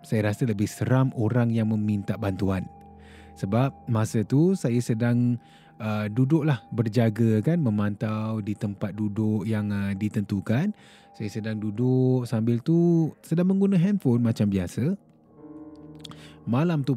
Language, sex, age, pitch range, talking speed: Malay, male, 20-39, 105-140 Hz, 125 wpm